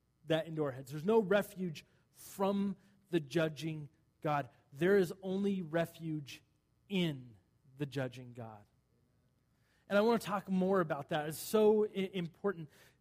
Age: 30-49